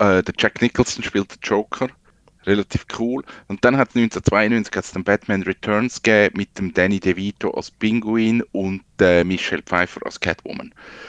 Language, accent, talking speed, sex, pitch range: German, Austrian, 160 wpm, male, 100-125 Hz